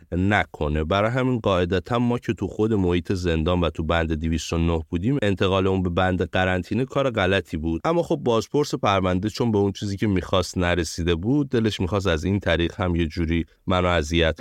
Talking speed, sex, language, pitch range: 190 wpm, male, Persian, 80-105 Hz